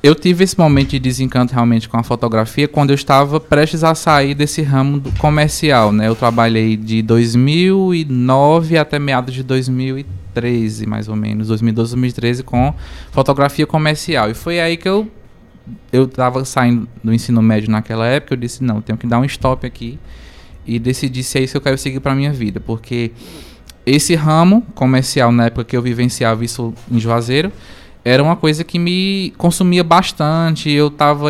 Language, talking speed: Portuguese, 175 wpm